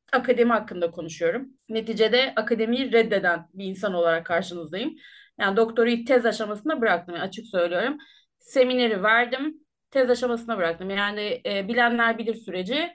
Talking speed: 130 wpm